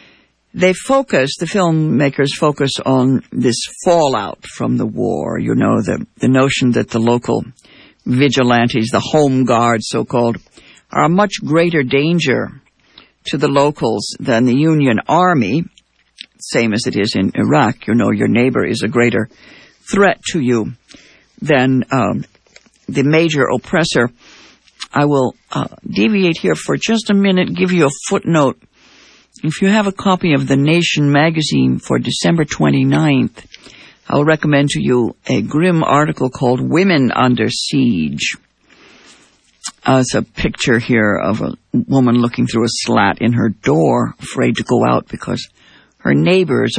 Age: 60-79